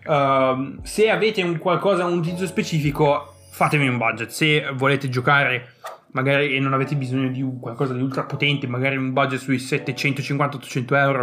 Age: 20-39